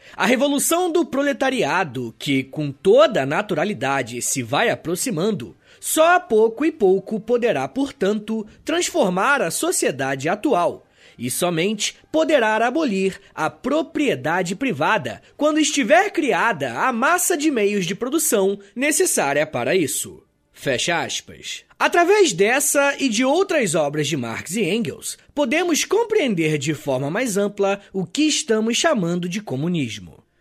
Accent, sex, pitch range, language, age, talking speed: Brazilian, male, 190-300 Hz, Portuguese, 20-39, 130 wpm